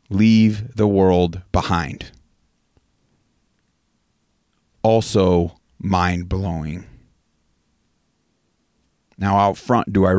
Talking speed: 65 wpm